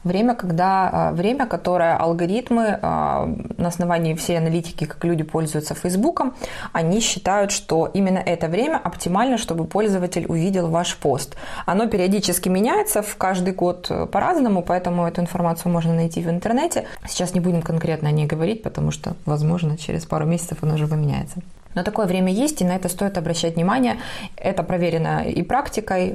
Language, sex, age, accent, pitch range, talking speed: Russian, female, 20-39, native, 170-205 Hz, 155 wpm